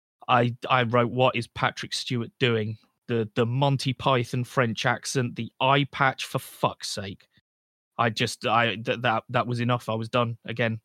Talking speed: 175 wpm